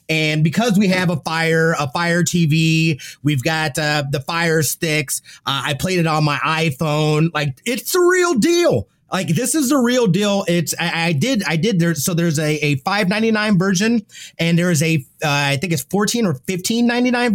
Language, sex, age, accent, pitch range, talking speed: English, male, 30-49, American, 145-195 Hz, 195 wpm